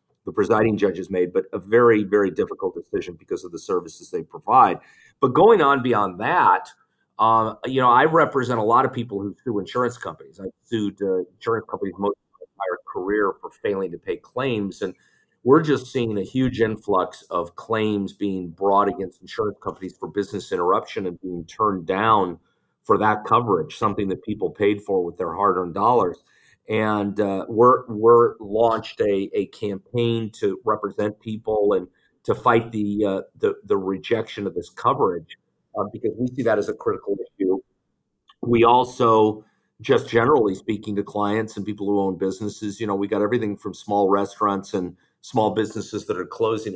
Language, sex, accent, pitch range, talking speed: English, male, American, 100-125 Hz, 175 wpm